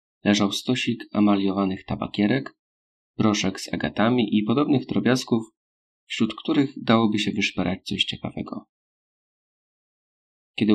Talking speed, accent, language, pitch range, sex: 100 wpm, native, Polish, 95-110 Hz, male